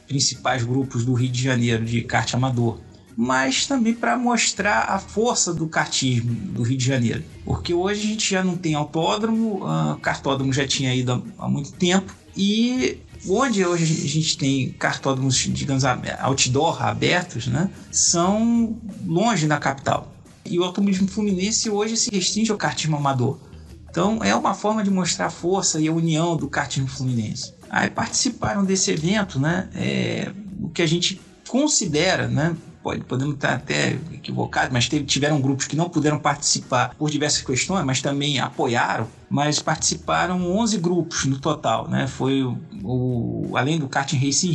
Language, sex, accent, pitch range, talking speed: Portuguese, male, Brazilian, 135-195 Hz, 165 wpm